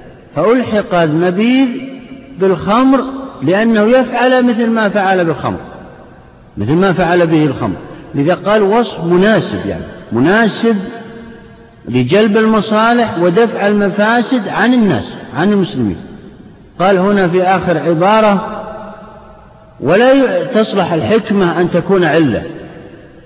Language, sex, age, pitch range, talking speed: Arabic, male, 50-69, 155-215 Hz, 105 wpm